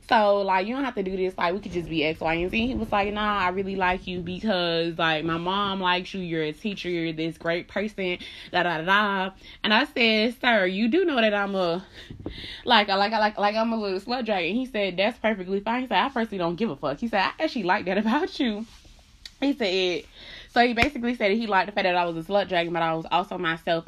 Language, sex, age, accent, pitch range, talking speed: English, female, 20-39, American, 170-215 Hz, 265 wpm